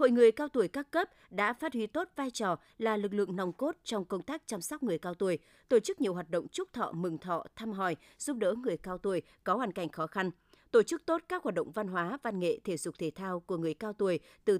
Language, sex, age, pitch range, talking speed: Vietnamese, female, 20-39, 185-245 Hz, 265 wpm